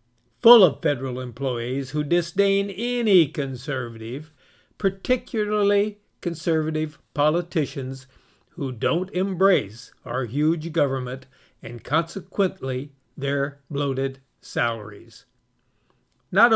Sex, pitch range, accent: male, 130-180 Hz, American